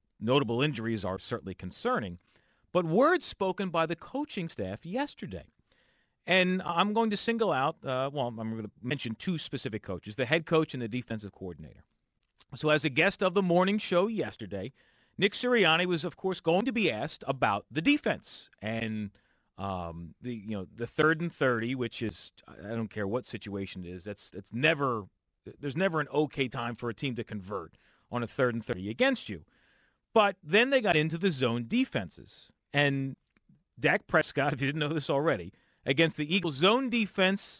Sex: male